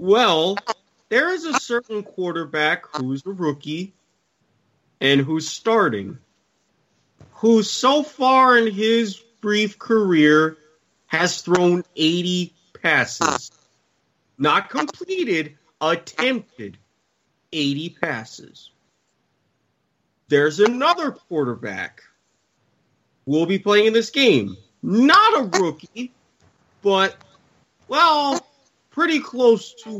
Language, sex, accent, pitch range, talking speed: English, male, American, 155-230 Hz, 90 wpm